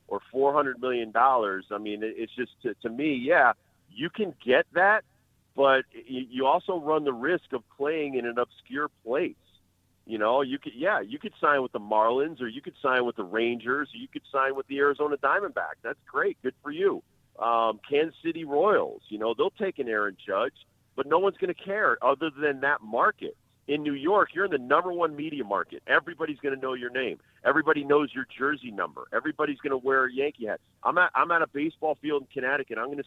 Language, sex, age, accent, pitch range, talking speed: English, male, 40-59, American, 120-165 Hz, 220 wpm